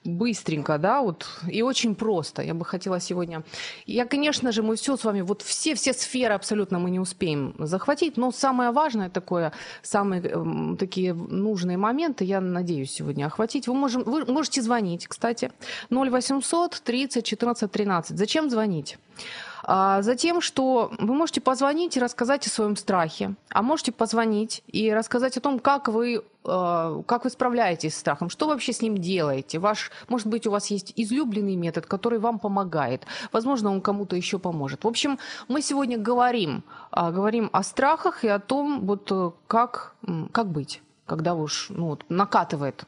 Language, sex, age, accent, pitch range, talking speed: Ukrainian, female, 30-49, native, 190-255 Hz, 160 wpm